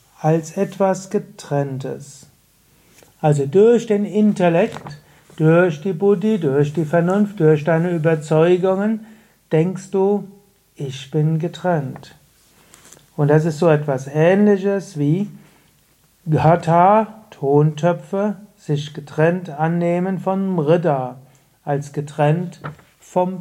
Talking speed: 95 wpm